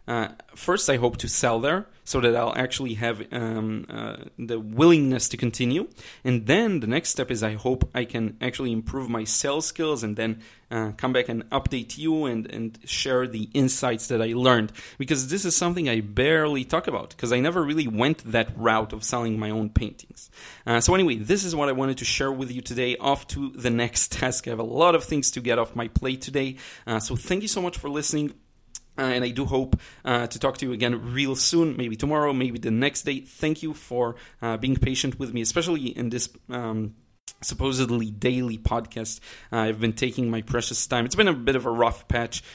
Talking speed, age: 220 wpm, 30-49